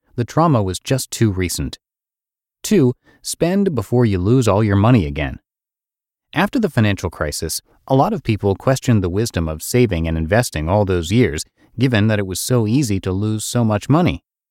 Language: English